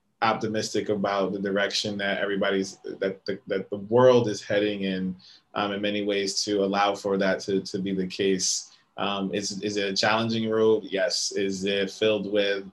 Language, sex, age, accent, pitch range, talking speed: English, male, 20-39, American, 100-115 Hz, 185 wpm